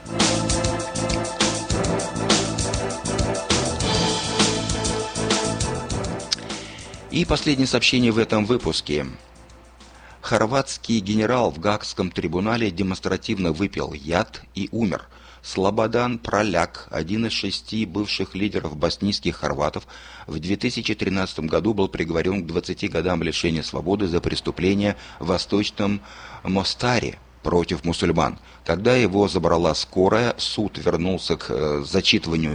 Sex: male